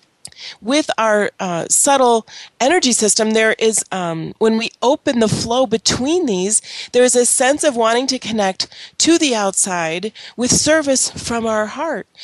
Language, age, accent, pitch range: English, 30-49, American, 200-255 Hz